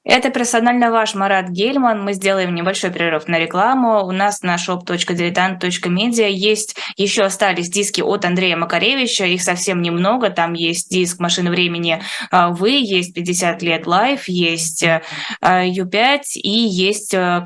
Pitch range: 175-215 Hz